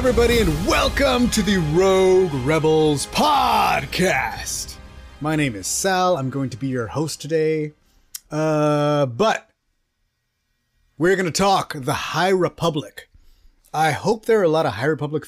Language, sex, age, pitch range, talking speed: English, male, 30-49, 130-180 Hz, 145 wpm